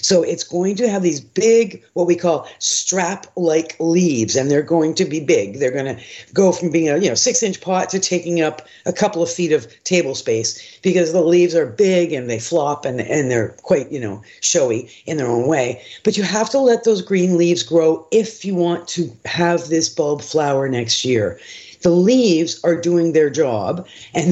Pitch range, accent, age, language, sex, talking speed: 160-195 Hz, American, 50-69, English, female, 205 wpm